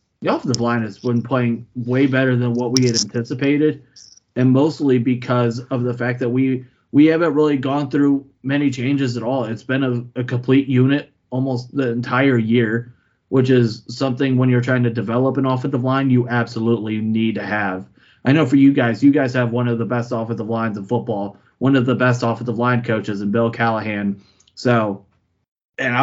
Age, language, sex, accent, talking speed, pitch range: 20-39, English, male, American, 195 wpm, 115-130 Hz